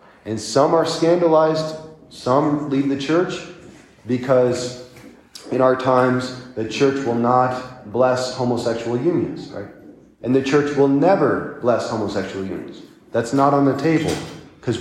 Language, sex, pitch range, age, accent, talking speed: English, male, 115-140 Hz, 30-49, American, 140 wpm